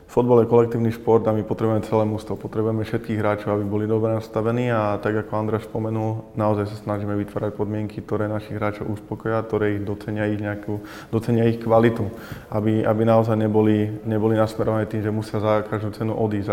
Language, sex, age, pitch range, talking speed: Slovak, male, 20-39, 105-110 Hz, 185 wpm